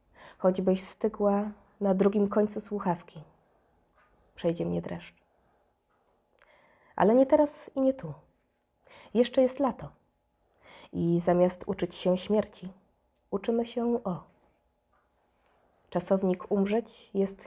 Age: 20-39